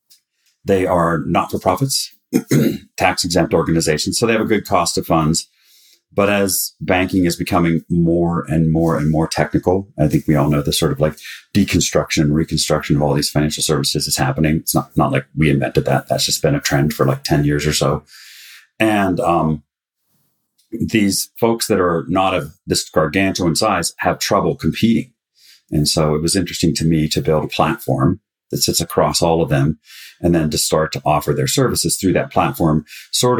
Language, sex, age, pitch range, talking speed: English, male, 40-59, 75-95 Hz, 185 wpm